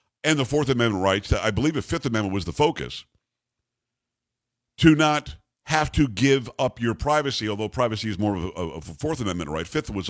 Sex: male